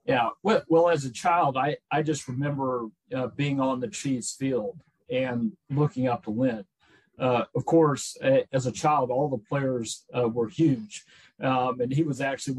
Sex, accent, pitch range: male, American, 125-145 Hz